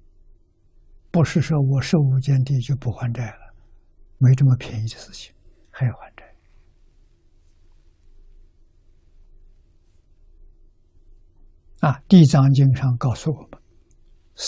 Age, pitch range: 60-79, 85-125 Hz